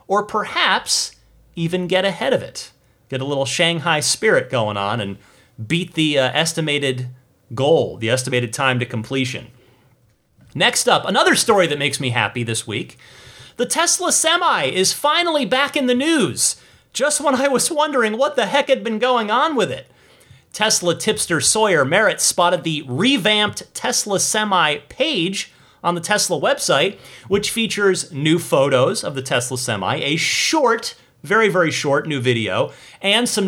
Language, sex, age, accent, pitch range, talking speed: English, male, 30-49, American, 135-220 Hz, 160 wpm